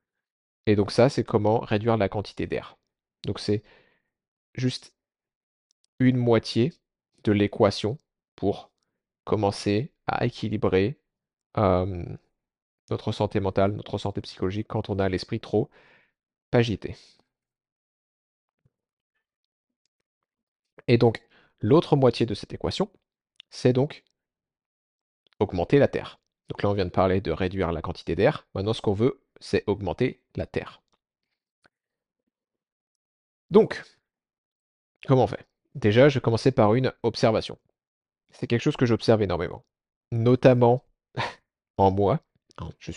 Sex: male